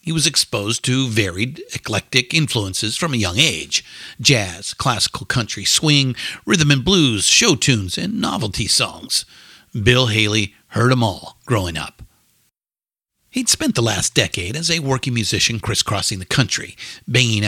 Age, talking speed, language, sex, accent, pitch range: 50-69, 150 wpm, English, male, American, 105-140 Hz